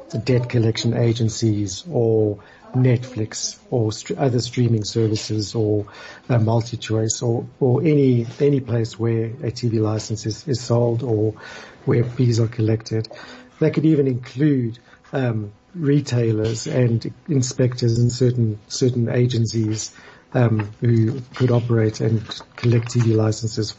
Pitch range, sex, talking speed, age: 110-130 Hz, male, 135 wpm, 50-69